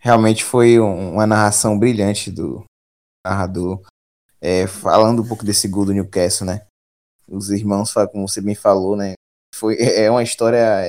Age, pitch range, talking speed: 20-39, 105-155 Hz, 150 wpm